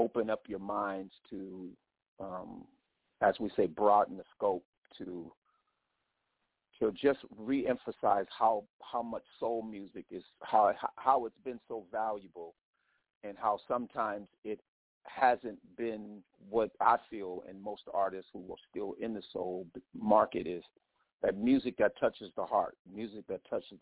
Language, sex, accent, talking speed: English, male, American, 145 wpm